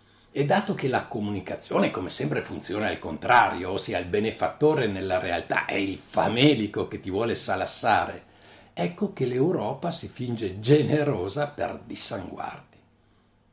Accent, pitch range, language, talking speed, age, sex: native, 105-120 Hz, Italian, 135 wpm, 60-79, male